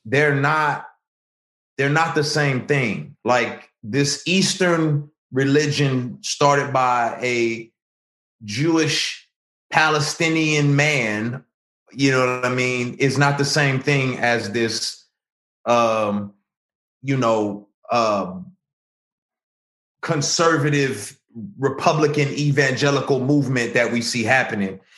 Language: English